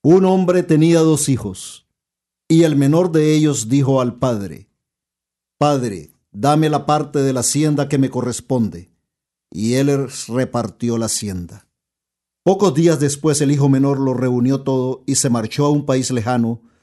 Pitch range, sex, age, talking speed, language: 120-150 Hz, male, 50-69, 155 wpm, Spanish